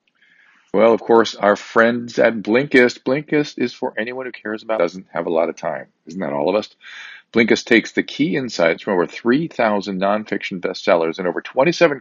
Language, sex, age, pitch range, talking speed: English, male, 40-59, 95-115 Hz, 190 wpm